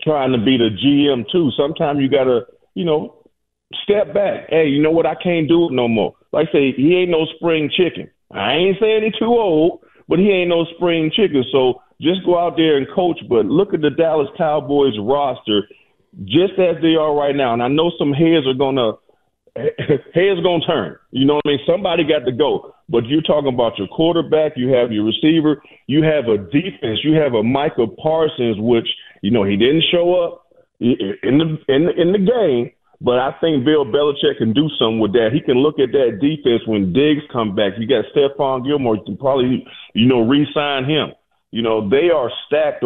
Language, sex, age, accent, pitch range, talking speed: English, male, 40-59, American, 120-165 Hz, 215 wpm